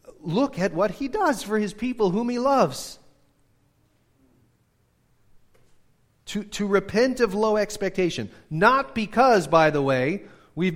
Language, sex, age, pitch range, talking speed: English, male, 40-59, 140-210 Hz, 130 wpm